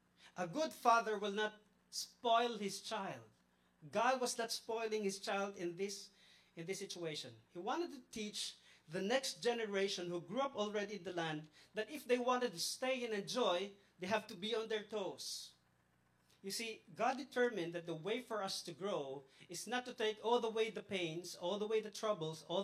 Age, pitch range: 40-59, 165-220 Hz